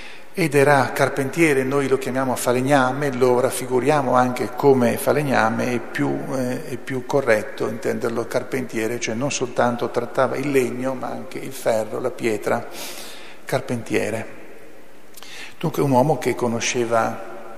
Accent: native